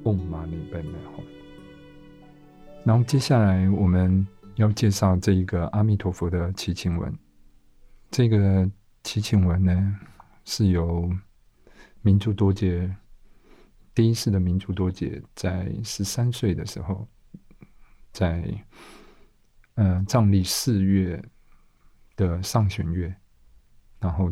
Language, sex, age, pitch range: Chinese, male, 50-69, 85-105 Hz